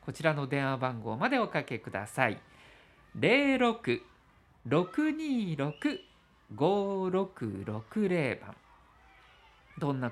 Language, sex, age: Japanese, male, 50-69